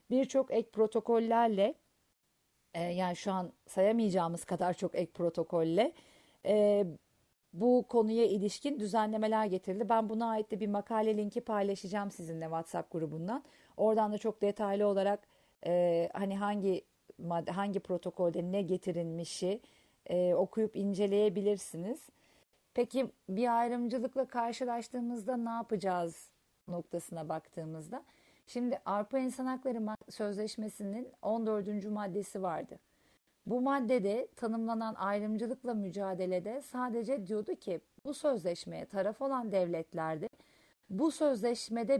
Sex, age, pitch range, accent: female, 40-59, 185-235 Hz, native